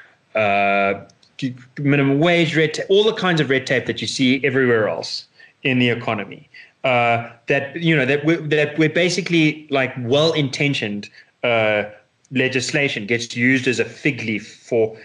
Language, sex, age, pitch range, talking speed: English, male, 30-49, 115-150 Hz, 160 wpm